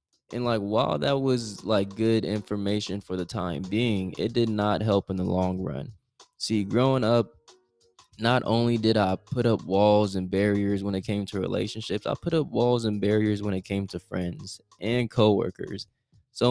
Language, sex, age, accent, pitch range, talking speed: English, male, 20-39, American, 95-115 Hz, 185 wpm